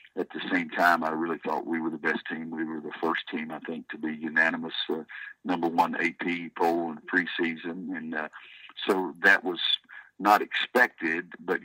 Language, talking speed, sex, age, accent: English, 195 wpm, male, 60-79, American